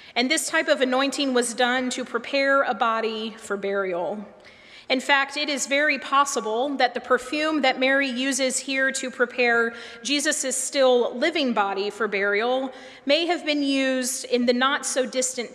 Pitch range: 220-265 Hz